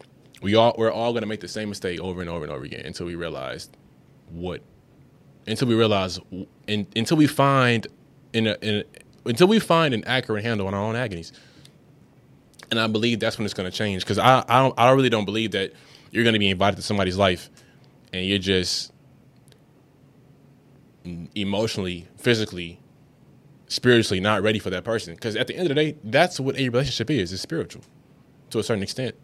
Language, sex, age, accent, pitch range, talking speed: English, male, 20-39, American, 100-130 Hz, 195 wpm